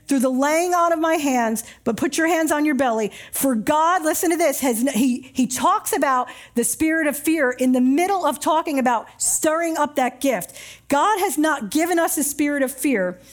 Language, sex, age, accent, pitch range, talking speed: English, female, 50-69, American, 255-340 Hz, 210 wpm